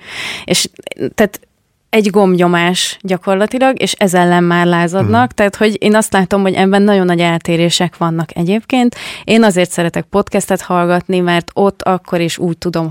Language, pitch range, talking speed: Hungarian, 160-185 Hz, 155 wpm